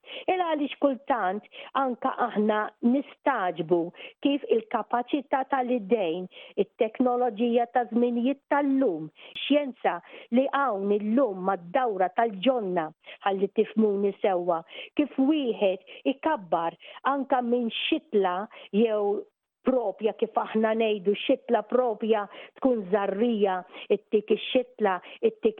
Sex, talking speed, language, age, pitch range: female, 95 wpm, English, 50-69, 205-270 Hz